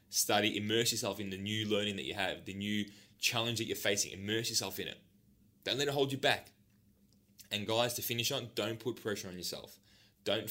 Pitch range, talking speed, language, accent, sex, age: 100-110 Hz, 210 wpm, English, Australian, male, 10-29